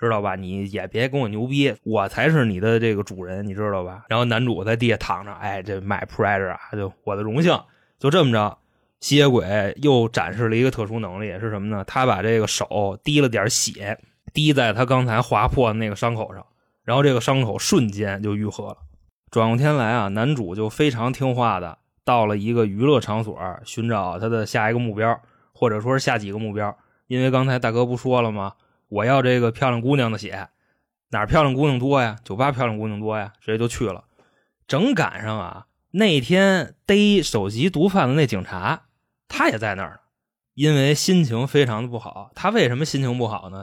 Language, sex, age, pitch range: Chinese, male, 20-39, 105-135 Hz